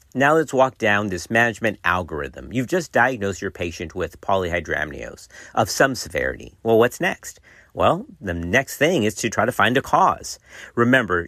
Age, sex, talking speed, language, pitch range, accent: 50-69, male, 170 wpm, English, 100-145 Hz, American